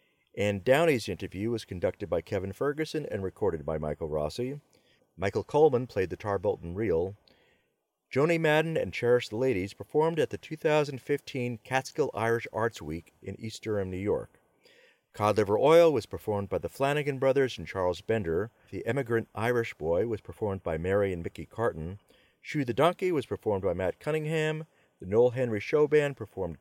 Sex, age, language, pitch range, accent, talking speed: male, 40-59, English, 100-145 Hz, American, 170 wpm